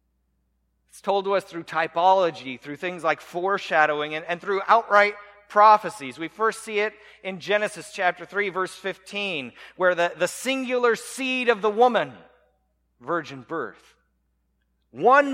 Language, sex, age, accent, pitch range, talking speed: English, male, 40-59, American, 150-220 Hz, 140 wpm